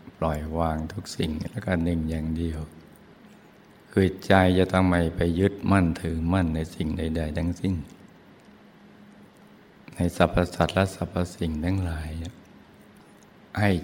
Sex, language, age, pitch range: male, Thai, 60-79, 80-90 Hz